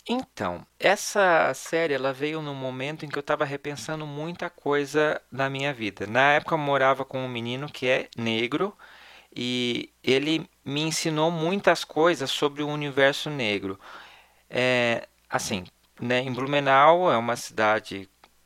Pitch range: 125-160 Hz